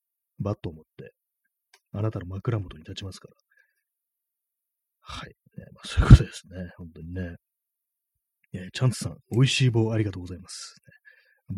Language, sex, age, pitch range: Japanese, male, 30-49, 95-145 Hz